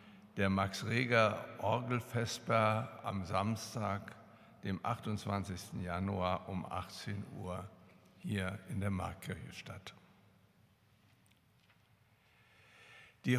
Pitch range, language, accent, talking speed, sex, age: 100-115 Hz, German, German, 70 wpm, male, 60-79